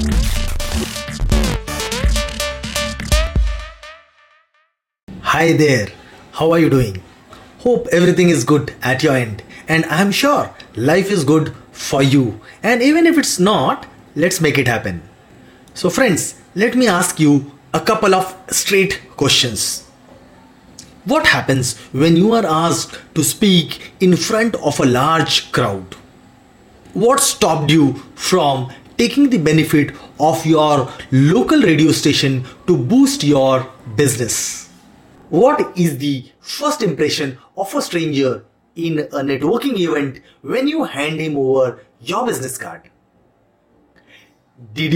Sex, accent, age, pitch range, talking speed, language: male, Indian, 30-49, 135-195 Hz, 125 wpm, English